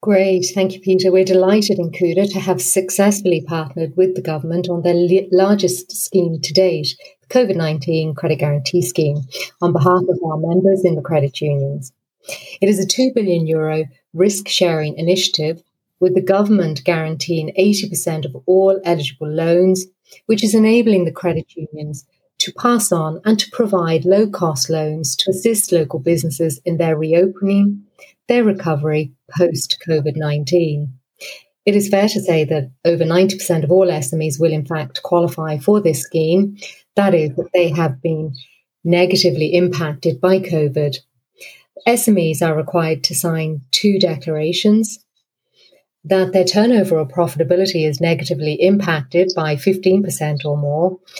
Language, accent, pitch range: English, British, 155-190 Hz